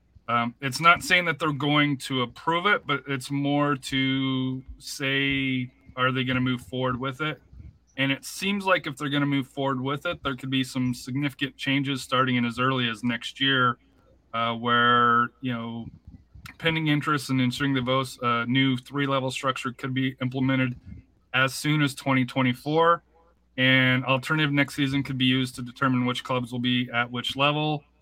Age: 30-49